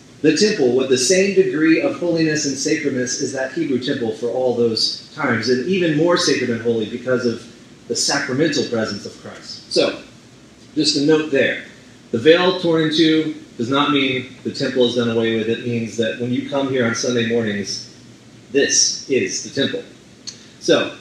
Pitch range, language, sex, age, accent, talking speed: 120-150 Hz, English, male, 30-49, American, 185 wpm